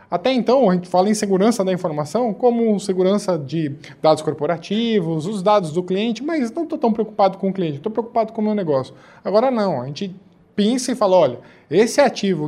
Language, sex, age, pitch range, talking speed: Portuguese, male, 20-39, 155-210 Hz, 200 wpm